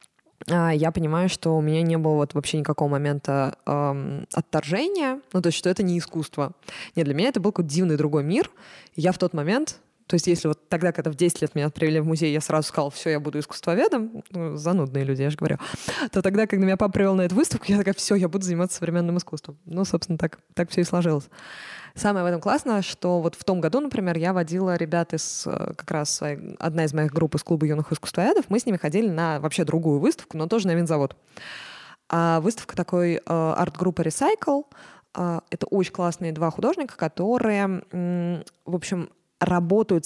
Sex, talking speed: female, 200 wpm